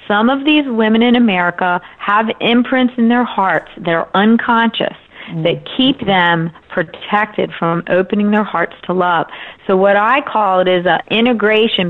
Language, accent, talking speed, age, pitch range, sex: English, American, 160 wpm, 40-59, 185-240 Hz, female